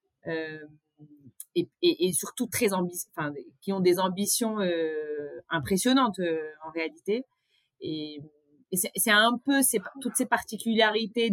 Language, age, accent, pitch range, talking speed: French, 30-49, French, 165-215 Hz, 130 wpm